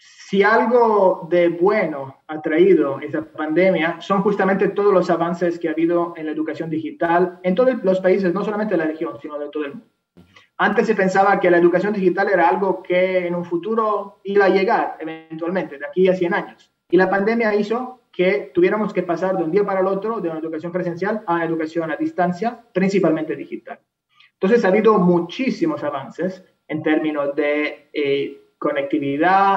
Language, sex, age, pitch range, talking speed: Spanish, male, 30-49, 160-205 Hz, 185 wpm